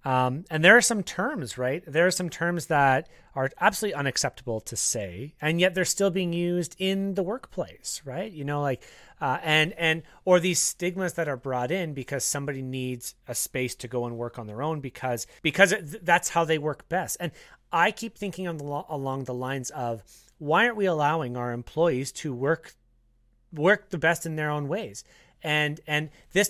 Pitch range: 120-165 Hz